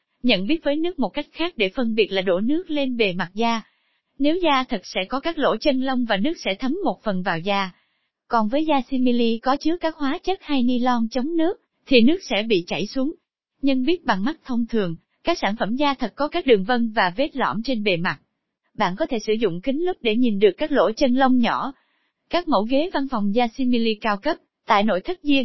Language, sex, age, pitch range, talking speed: Vietnamese, female, 20-39, 220-295 Hz, 240 wpm